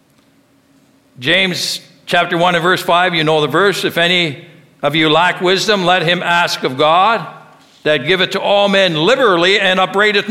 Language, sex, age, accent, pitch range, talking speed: English, male, 60-79, American, 145-195 Hz, 175 wpm